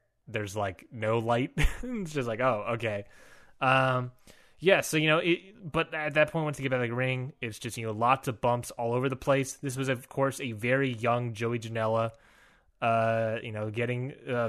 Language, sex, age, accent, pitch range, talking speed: English, male, 20-39, American, 115-145 Hz, 215 wpm